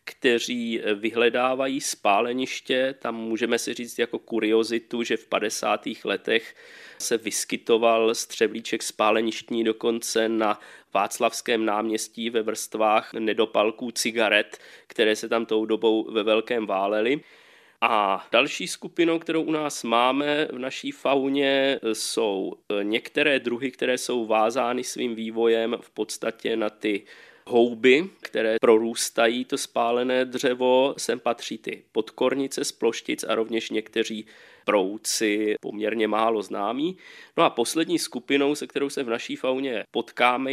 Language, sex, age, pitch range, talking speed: Czech, male, 20-39, 110-130 Hz, 125 wpm